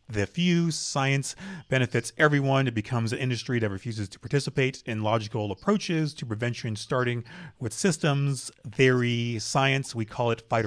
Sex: male